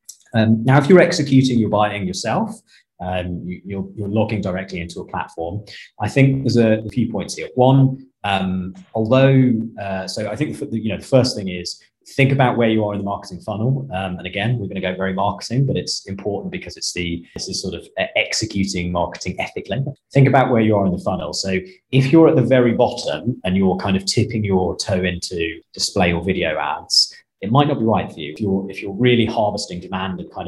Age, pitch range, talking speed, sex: 20-39, 95-120 Hz, 220 wpm, male